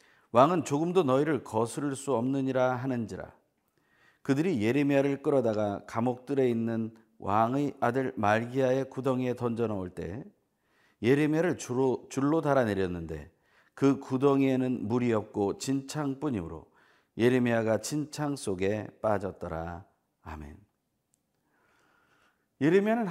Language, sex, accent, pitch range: Korean, male, native, 100-145 Hz